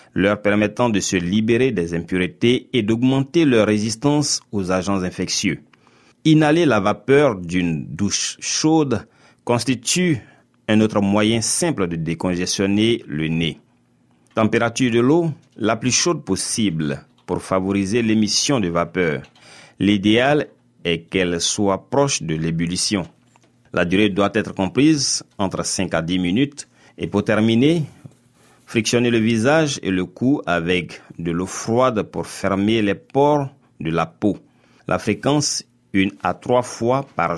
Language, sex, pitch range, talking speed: French, male, 90-125 Hz, 135 wpm